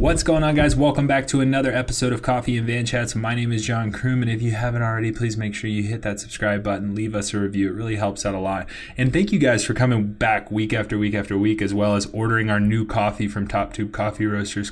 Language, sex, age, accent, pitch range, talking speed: English, male, 20-39, American, 105-125 Hz, 270 wpm